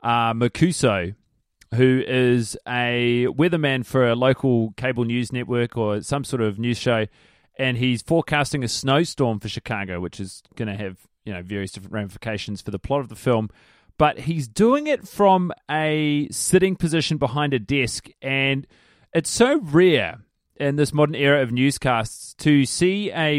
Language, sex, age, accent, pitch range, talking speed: English, male, 30-49, Australian, 120-150 Hz, 165 wpm